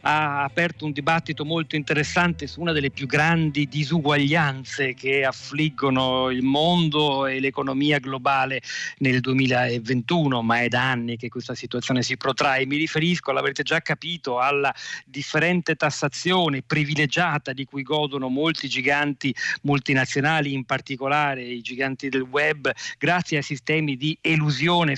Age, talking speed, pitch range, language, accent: 40-59, 135 wpm, 130-150 Hz, Italian, native